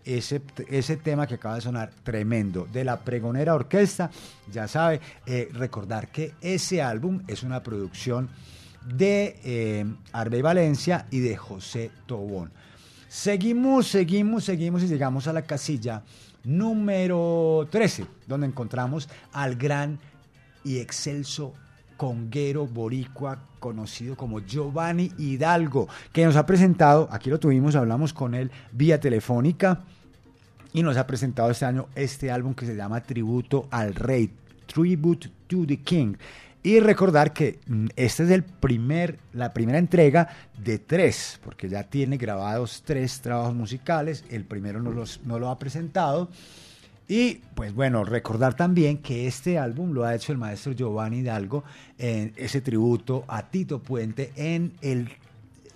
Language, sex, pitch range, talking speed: Spanish, male, 120-155 Hz, 140 wpm